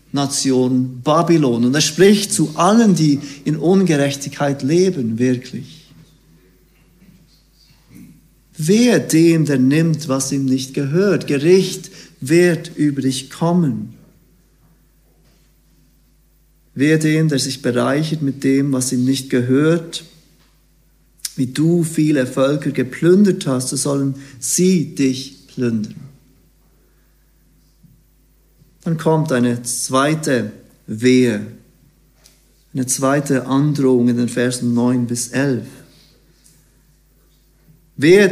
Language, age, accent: German, 50-69, German